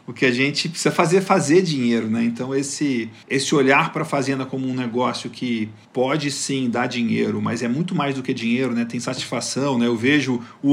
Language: Portuguese